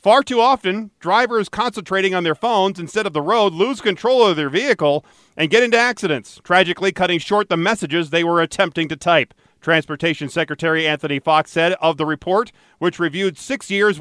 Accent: American